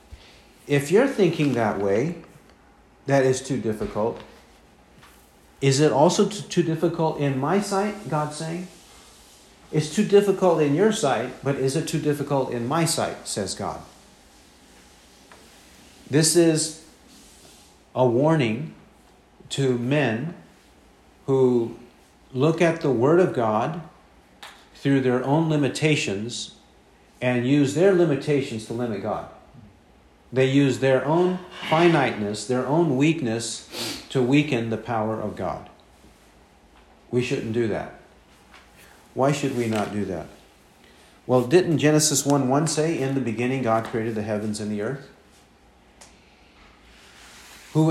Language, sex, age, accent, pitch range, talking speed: English, male, 50-69, American, 115-155 Hz, 125 wpm